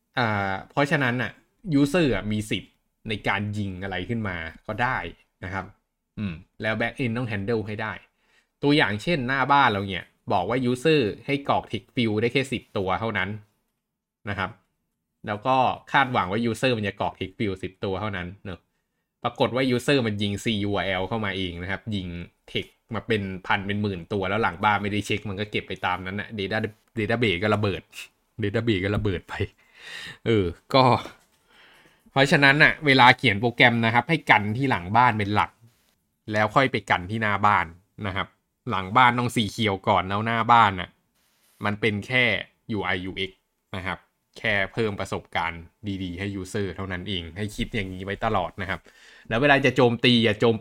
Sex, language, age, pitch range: male, Thai, 20-39, 95-120 Hz